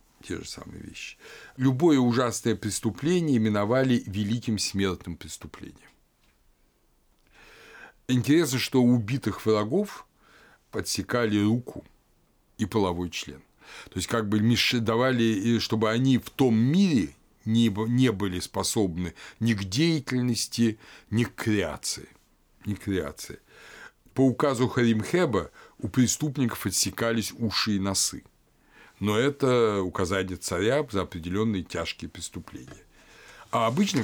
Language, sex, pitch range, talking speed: Russian, male, 95-120 Hz, 100 wpm